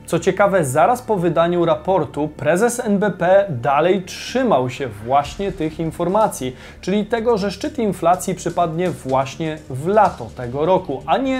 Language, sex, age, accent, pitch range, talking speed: Polish, male, 30-49, native, 145-195 Hz, 140 wpm